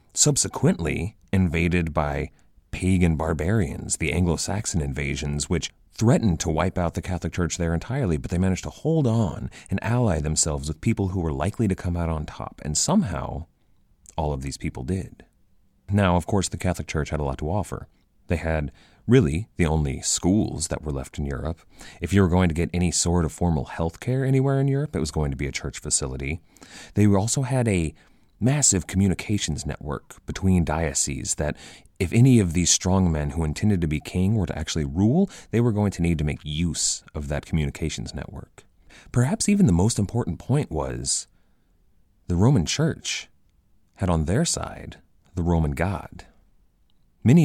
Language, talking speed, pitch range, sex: English, 180 wpm, 75-100 Hz, male